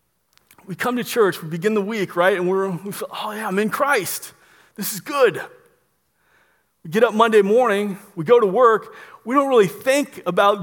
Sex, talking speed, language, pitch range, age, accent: male, 185 wpm, English, 195-245 Hz, 30-49, American